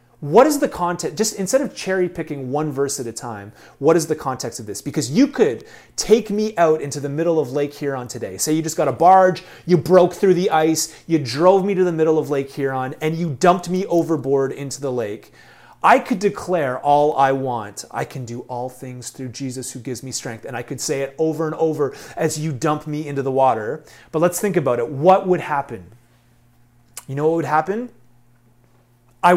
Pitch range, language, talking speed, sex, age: 130-175 Hz, English, 220 wpm, male, 30-49